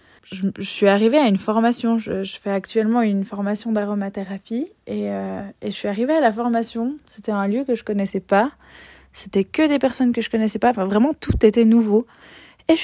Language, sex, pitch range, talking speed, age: French, female, 195-225 Hz, 220 wpm, 20-39